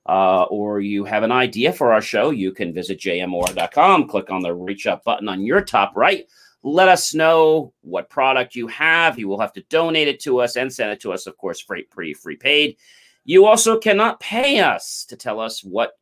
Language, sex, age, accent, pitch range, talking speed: English, male, 40-59, American, 105-165 Hz, 215 wpm